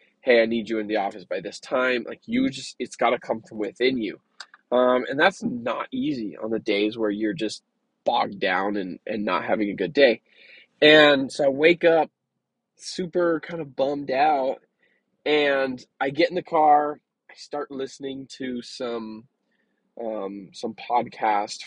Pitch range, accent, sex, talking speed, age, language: 120-170 Hz, American, male, 175 wpm, 20-39, English